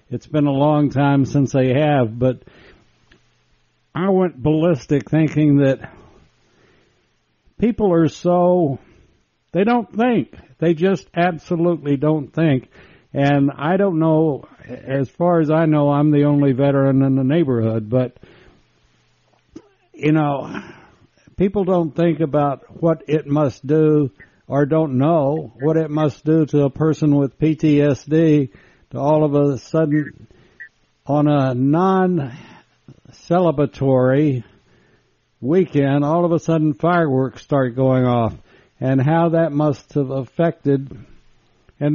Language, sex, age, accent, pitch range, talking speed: English, male, 60-79, American, 135-160 Hz, 125 wpm